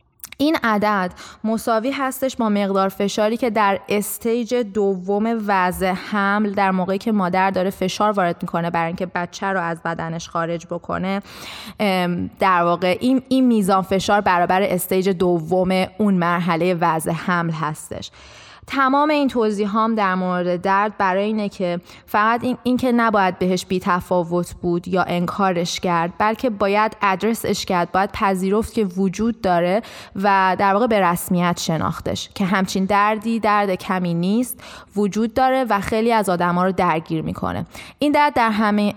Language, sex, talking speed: Persian, female, 155 wpm